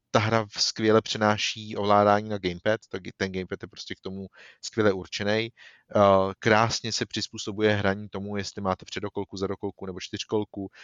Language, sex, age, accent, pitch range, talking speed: Czech, male, 30-49, native, 100-115 Hz, 155 wpm